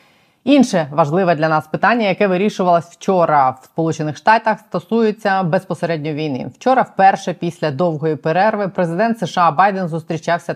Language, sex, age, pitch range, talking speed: Ukrainian, female, 20-39, 150-185 Hz, 130 wpm